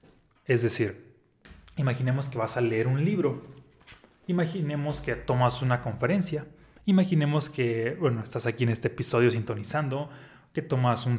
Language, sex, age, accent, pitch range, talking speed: Spanish, male, 30-49, Mexican, 120-150 Hz, 135 wpm